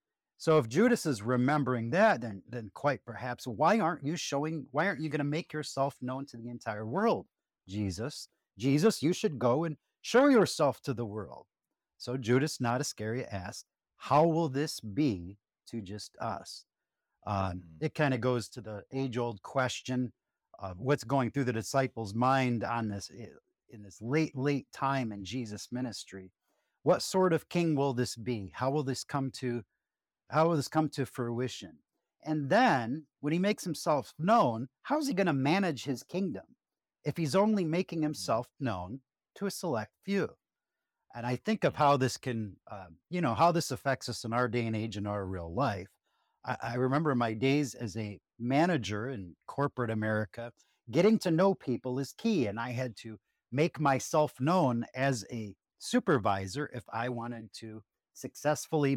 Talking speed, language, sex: 180 wpm, English, male